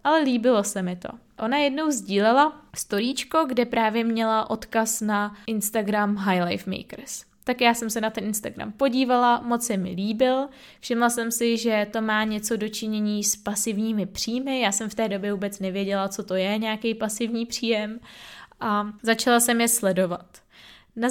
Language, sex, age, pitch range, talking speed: Czech, female, 20-39, 210-240 Hz, 170 wpm